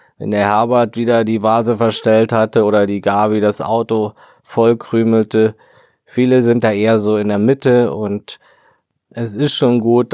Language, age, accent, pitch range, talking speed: German, 20-39, German, 105-115 Hz, 160 wpm